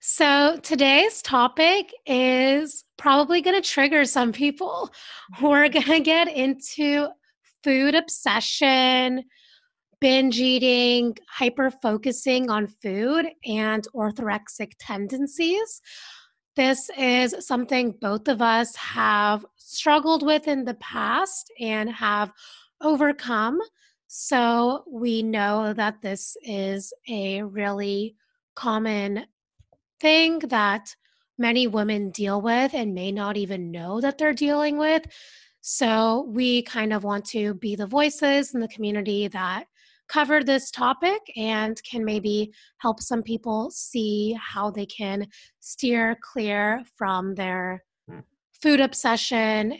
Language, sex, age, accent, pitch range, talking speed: English, female, 20-39, American, 210-285 Hz, 115 wpm